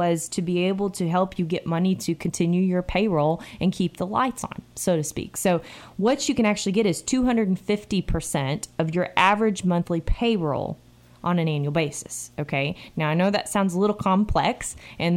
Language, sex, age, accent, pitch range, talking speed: English, female, 20-39, American, 160-195 Hz, 190 wpm